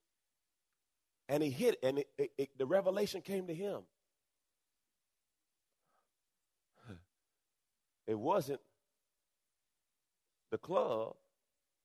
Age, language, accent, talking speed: 40-59, English, American, 65 wpm